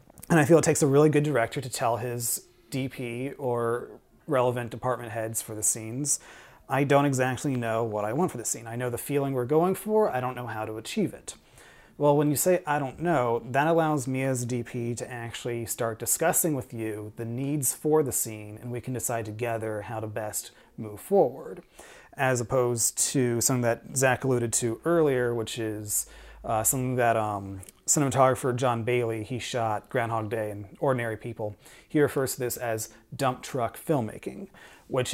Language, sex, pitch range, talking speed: English, male, 115-145 Hz, 190 wpm